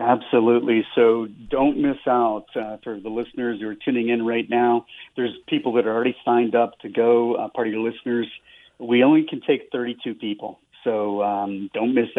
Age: 40-59